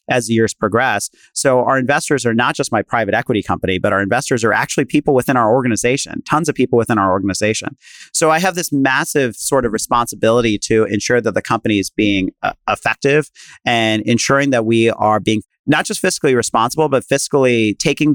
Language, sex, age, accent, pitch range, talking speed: English, male, 40-59, American, 105-135 Hz, 195 wpm